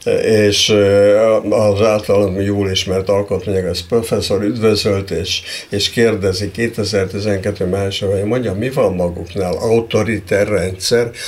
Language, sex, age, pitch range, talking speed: Hungarian, male, 60-79, 100-120 Hz, 105 wpm